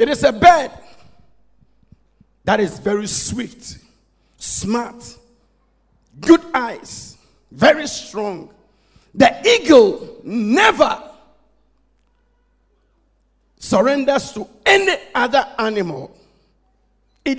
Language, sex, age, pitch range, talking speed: English, male, 50-69, 210-295 Hz, 75 wpm